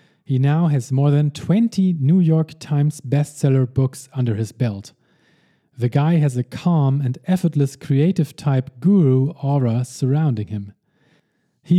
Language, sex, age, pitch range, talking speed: English, male, 40-59, 125-165 Hz, 145 wpm